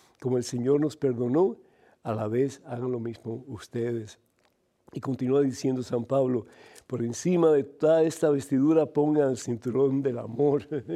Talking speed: 155 wpm